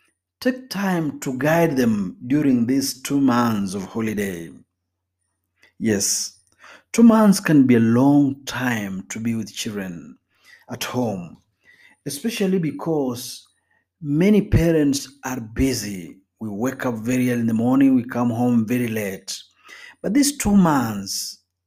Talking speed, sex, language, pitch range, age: 135 wpm, male, Swahili, 115-180 Hz, 50-69